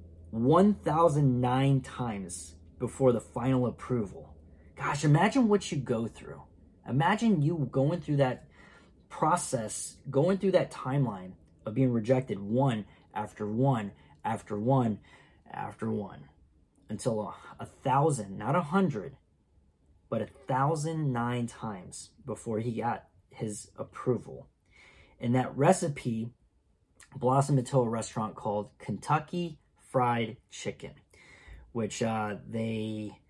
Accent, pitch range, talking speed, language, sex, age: American, 110-140 Hz, 110 wpm, English, male, 20-39